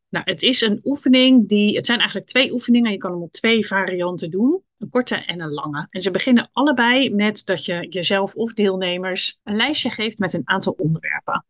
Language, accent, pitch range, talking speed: Dutch, Dutch, 180-240 Hz, 210 wpm